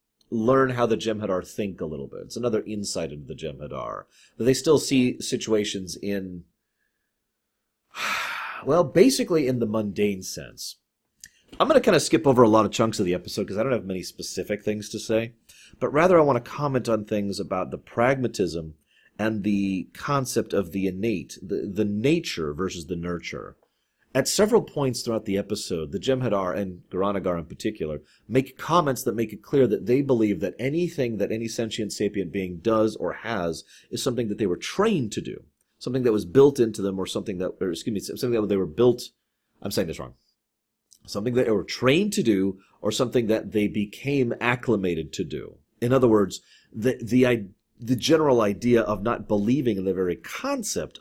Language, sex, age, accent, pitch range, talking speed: English, male, 30-49, American, 95-125 Hz, 190 wpm